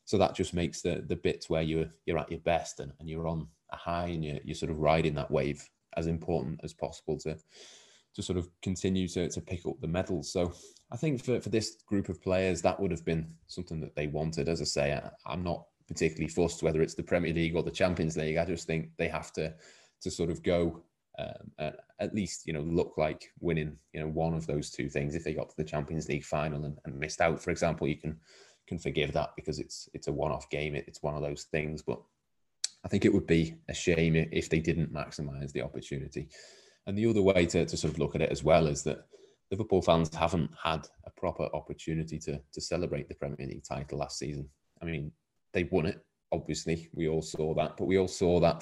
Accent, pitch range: British, 75-85 Hz